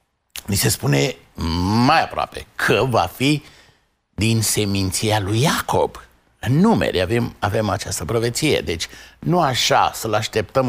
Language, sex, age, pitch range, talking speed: Romanian, male, 60-79, 100-145 Hz, 130 wpm